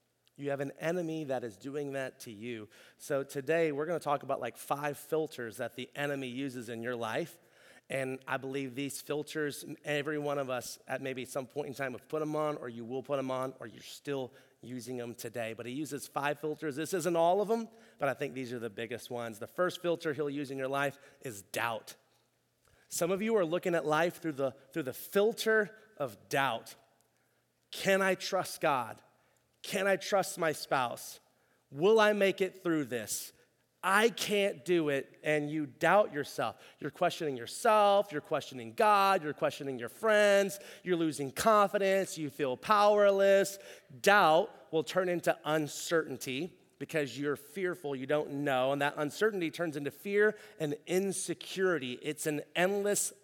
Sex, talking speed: male, 180 wpm